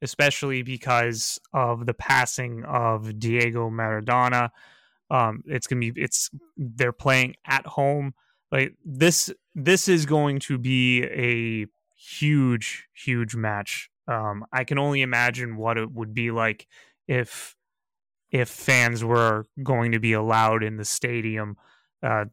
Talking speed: 135 wpm